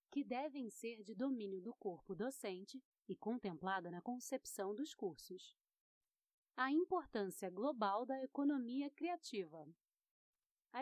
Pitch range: 195-275 Hz